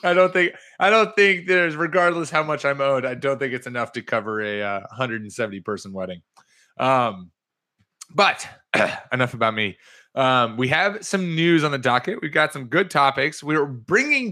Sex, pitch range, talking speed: male, 115-165 Hz, 185 wpm